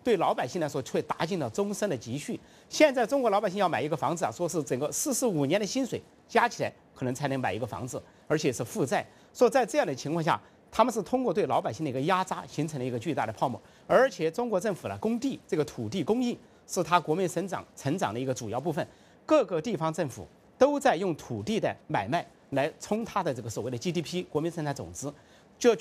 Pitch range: 150-240 Hz